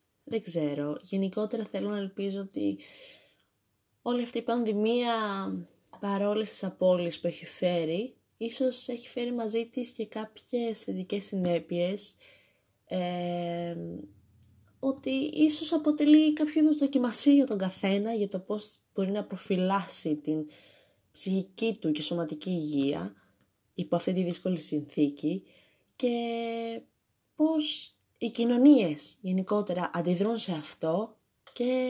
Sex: female